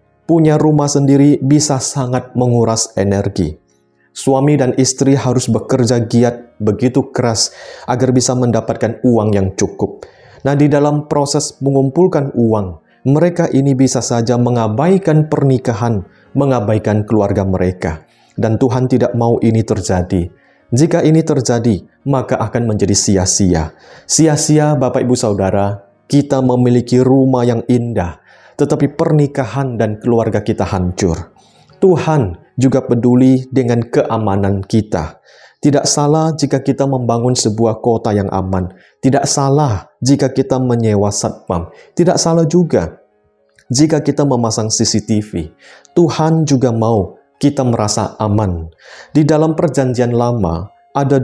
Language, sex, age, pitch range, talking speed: Indonesian, male, 30-49, 105-140 Hz, 120 wpm